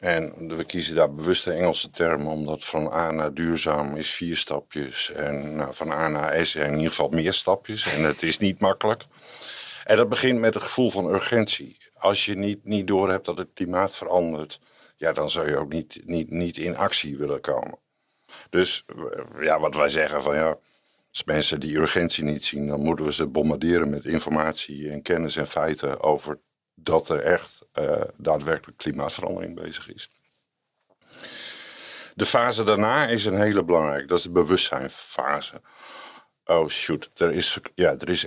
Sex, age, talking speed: male, 60-79, 170 wpm